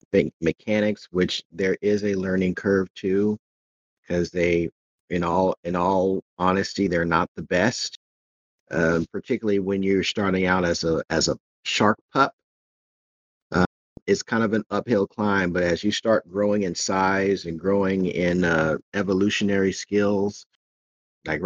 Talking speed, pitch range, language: 145 wpm, 85-95 Hz, English